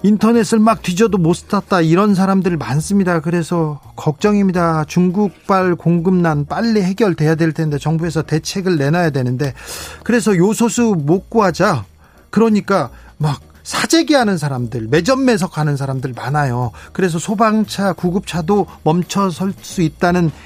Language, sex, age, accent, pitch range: Korean, male, 40-59, native, 145-195 Hz